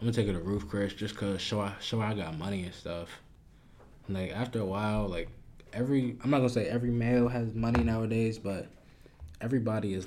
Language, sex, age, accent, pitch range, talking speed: English, male, 20-39, American, 95-115 Hz, 205 wpm